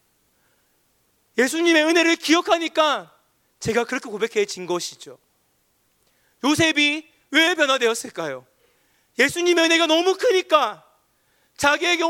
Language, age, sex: Korean, 40-59, male